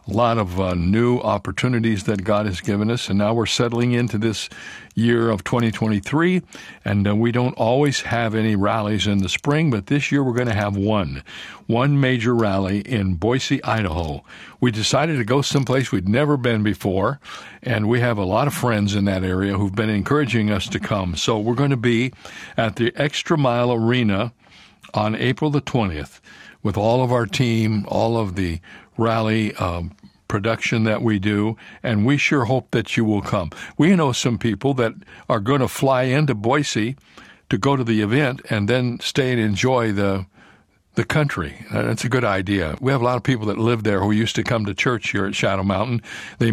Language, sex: English, male